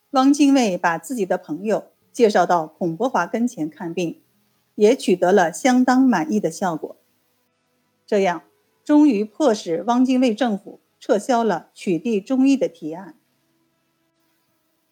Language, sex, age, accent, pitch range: Chinese, female, 50-69, native, 165-245 Hz